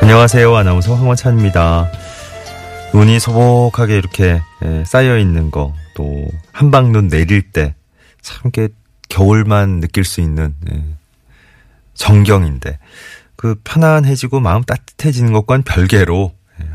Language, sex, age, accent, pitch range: Korean, male, 30-49, native, 80-110 Hz